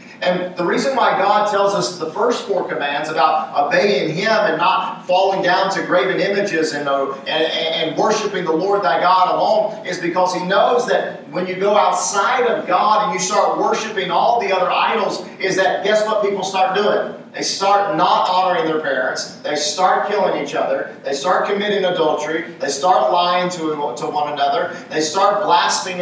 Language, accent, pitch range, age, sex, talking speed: English, American, 175-205 Hz, 40-59, male, 190 wpm